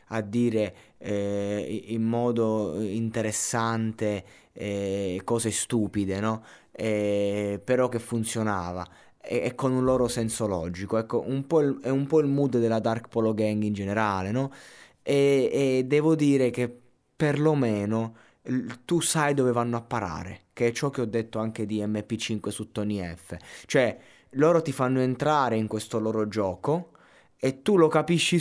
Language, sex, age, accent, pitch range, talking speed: Italian, male, 20-39, native, 105-130 Hz, 155 wpm